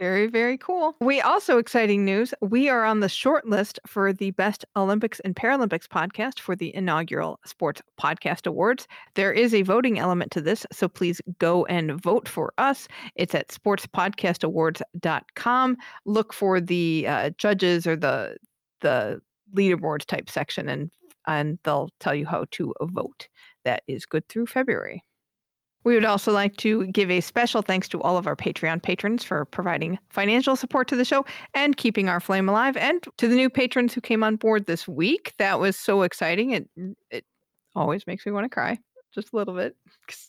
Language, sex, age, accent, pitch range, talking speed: English, female, 40-59, American, 180-240 Hz, 180 wpm